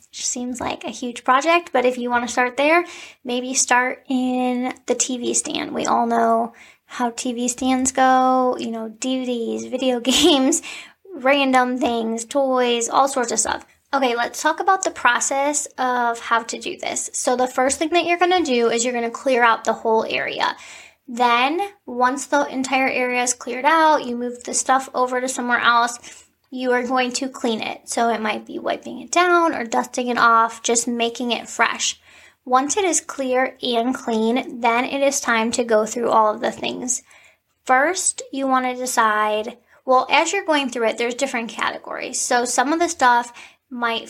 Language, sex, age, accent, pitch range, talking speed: English, female, 10-29, American, 235-270 Hz, 190 wpm